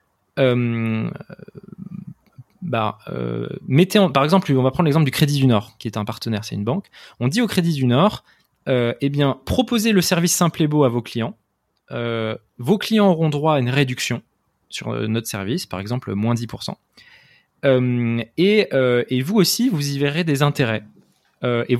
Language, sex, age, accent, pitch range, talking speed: French, male, 20-39, French, 115-155 Hz, 185 wpm